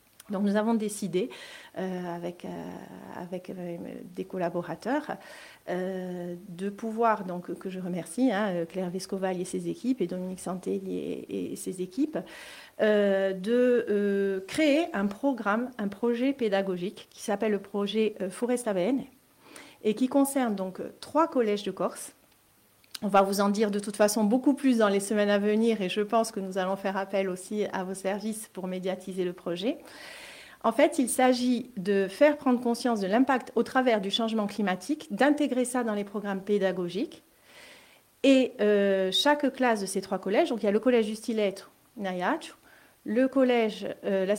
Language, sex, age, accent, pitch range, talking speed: French, female, 40-59, French, 190-245 Hz, 170 wpm